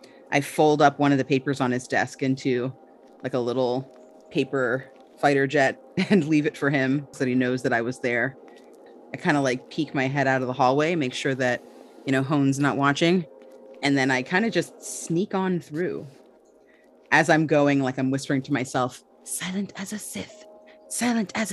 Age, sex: 30-49, female